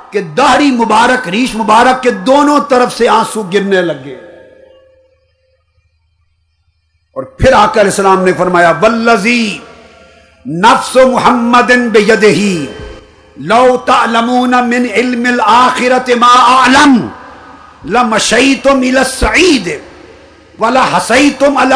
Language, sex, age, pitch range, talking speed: Urdu, male, 50-69, 210-275 Hz, 50 wpm